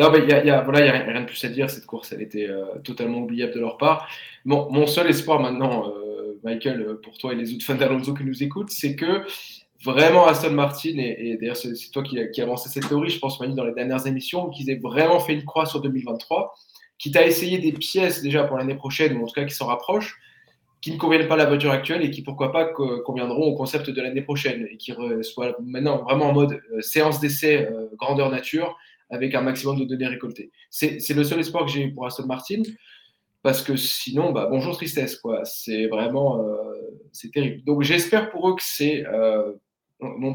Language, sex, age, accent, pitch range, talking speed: French, male, 20-39, French, 125-155 Hz, 225 wpm